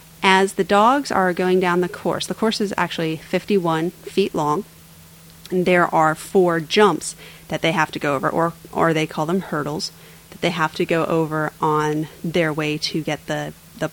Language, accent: English, American